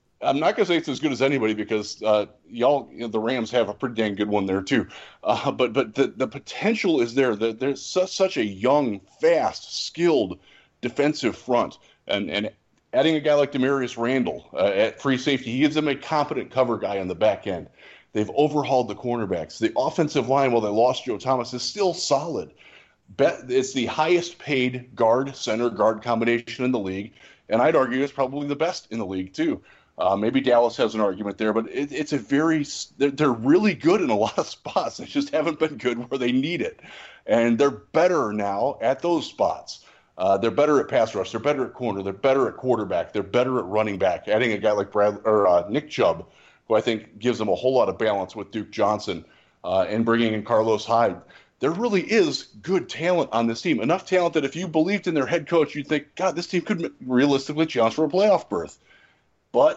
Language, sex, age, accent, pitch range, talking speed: English, male, 30-49, American, 115-150 Hz, 215 wpm